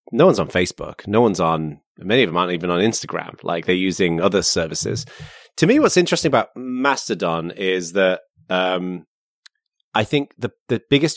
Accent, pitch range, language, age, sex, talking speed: British, 90-115 Hz, English, 30-49, male, 175 wpm